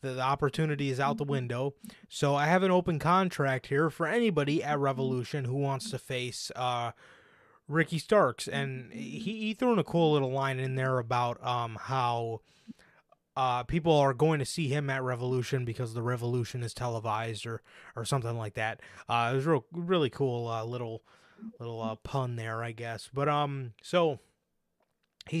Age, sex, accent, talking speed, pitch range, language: 20-39, male, American, 180 wpm, 120-155 Hz, English